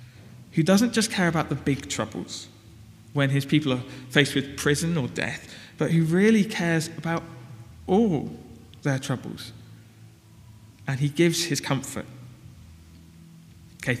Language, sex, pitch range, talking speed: English, male, 120-165 Hz, 135 wpm